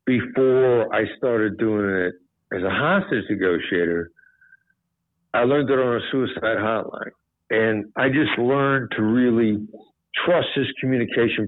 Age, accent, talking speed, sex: 60-79, American, 130 wpm, male